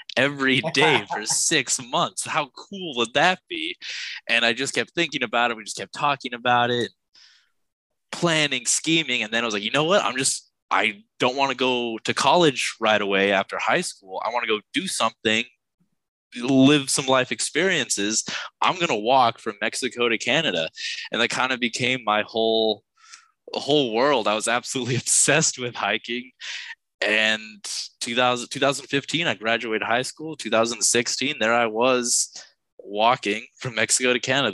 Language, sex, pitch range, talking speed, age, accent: English, male, 110-135 Hz, 165 wpm, 20-39, American